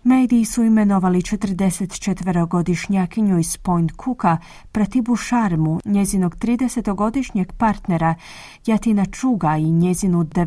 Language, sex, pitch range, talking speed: Croatian, female, 175-220 Hz, 90 wpm